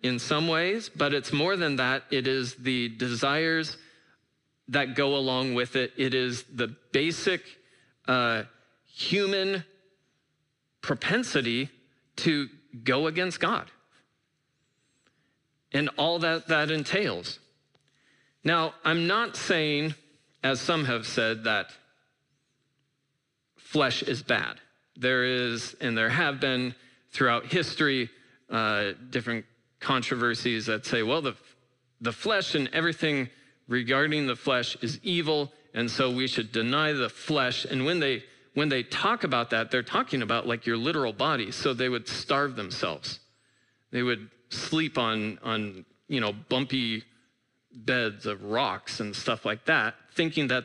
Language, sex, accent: English, male, American